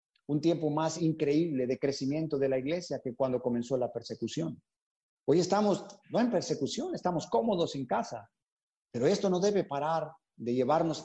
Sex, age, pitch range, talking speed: male, 40-59, 130-165 Hz, 165 wpm